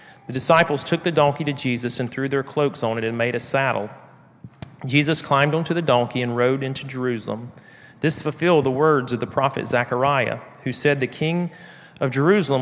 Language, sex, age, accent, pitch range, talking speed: English, male, 40-59, American, 120-145 Hz, 190 wpm